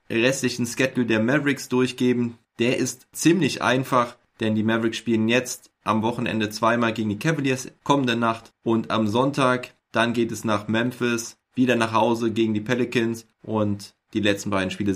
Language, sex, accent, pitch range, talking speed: German, male, German, 110-130 Hz, 165 wpm